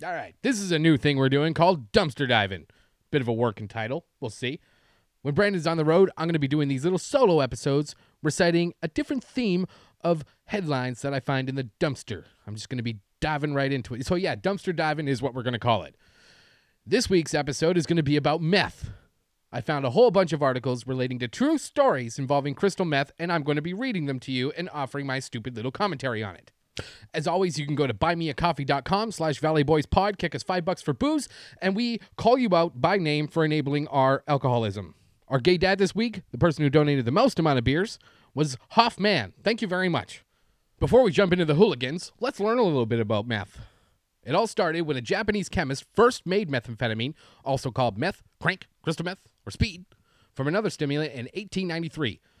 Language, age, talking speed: English, 30-49, 215 wpm